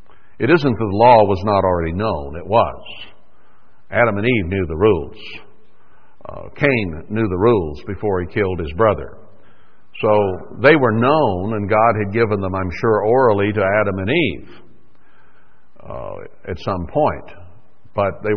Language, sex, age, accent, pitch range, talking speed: English, male, 60-79, American, 95-110 Hz, 160 wpm